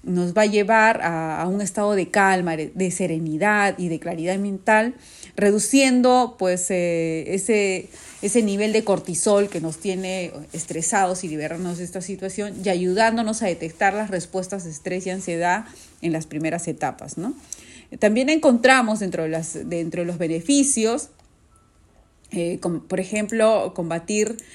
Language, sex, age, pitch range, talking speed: Spanish, female, 30-49, 170-215 Hz, 150 wpm